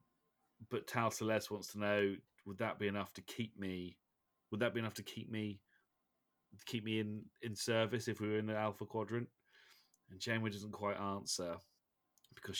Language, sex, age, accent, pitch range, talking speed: English, male, 30-49, British, 90-105 Hz, 185 wpm